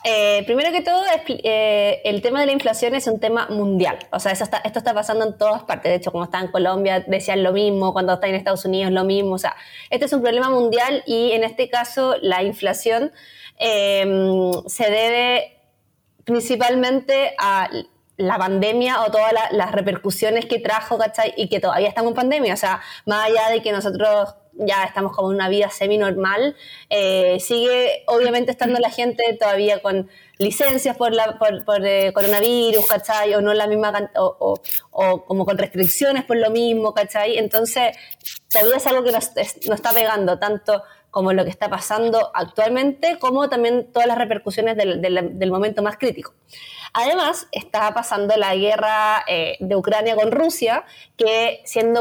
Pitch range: 200-235 Hz